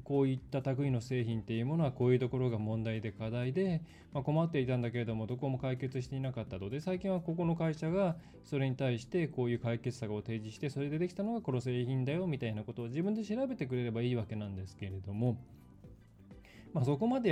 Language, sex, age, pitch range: Japanese, male, 20-39, 115-170 Hz